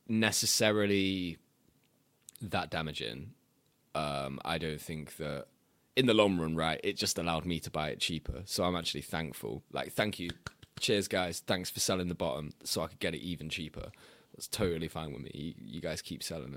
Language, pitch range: English, 90-120 Hz